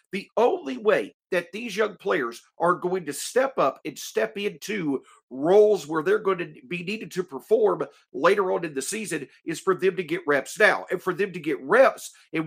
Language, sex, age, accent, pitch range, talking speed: English, male, 50-69, American, 155-205 Hz, 205 wpm